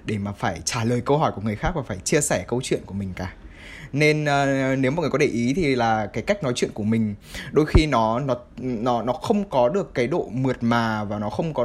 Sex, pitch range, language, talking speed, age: male, 110-150 Hz, Vietnamese, 270 wpm, 20-39